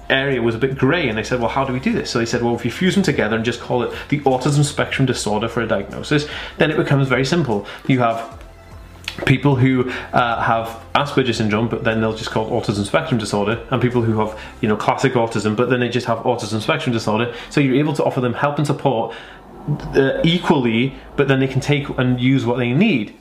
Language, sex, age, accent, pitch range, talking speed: English, male, 20-39, British, 115-135 Hz, 240 wpm